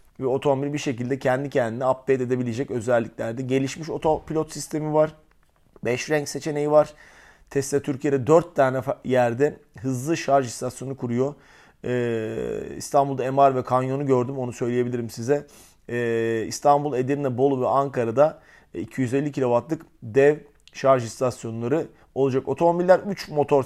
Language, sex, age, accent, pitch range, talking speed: Turkish, male, 40-59, native, 125-145 Hz, 125 wpm